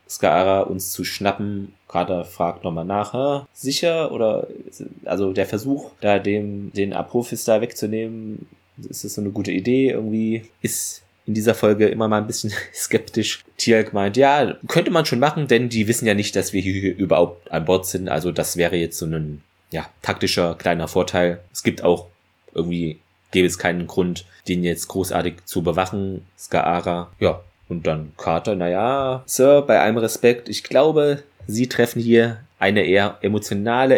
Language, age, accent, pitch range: German, 20-39, German, 90-115 Hz